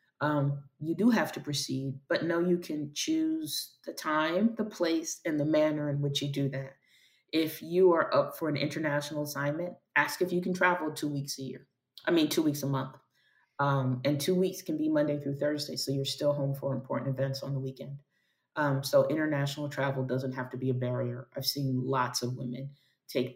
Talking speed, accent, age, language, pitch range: 205 wpm, American, 30-49, English, 135-150 Hz